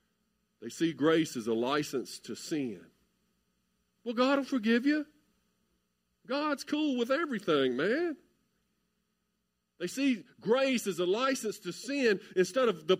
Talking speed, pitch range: 135 wpm, 135-215 Hz